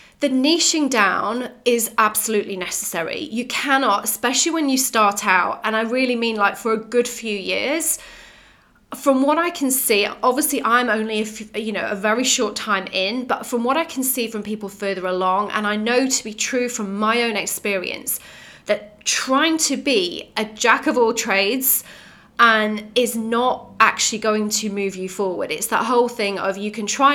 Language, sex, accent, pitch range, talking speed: English, female, British, 205-250 Hz, 185 wpm